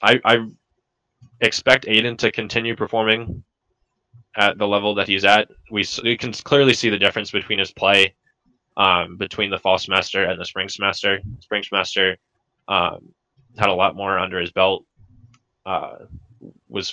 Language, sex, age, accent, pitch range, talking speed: English, male, 20-39, American, 95-115 Hz, 155 wpm